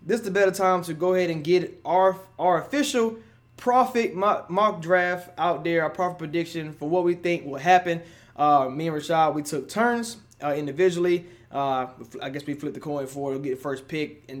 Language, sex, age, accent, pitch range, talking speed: English, male, 20-39, American, 150-185 Hz, 210 wpm